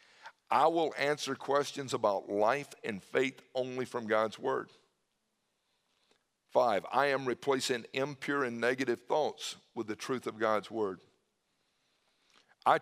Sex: male